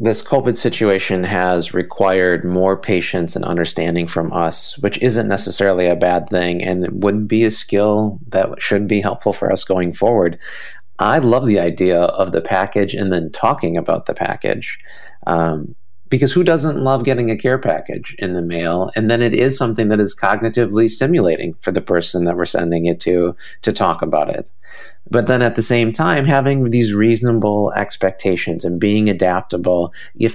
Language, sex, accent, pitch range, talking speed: English, male, American, 90-115 Hz, 180 wpm